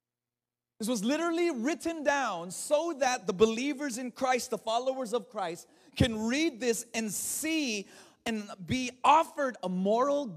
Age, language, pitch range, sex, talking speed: 30-49, English, 175-235 Hz, male, 145 wpm